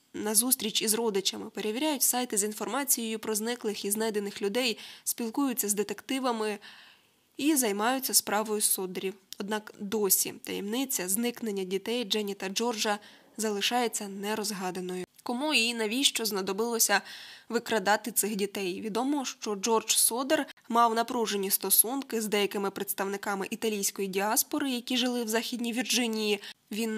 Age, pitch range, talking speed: 10-29, 200-235 Hz, 120 wpm